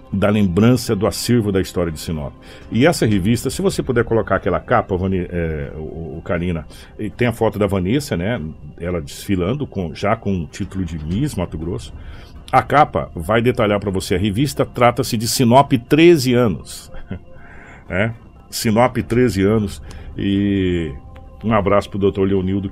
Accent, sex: Brazilian, male